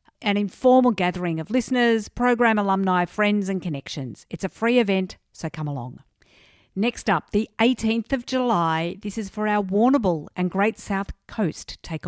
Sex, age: female, 50-69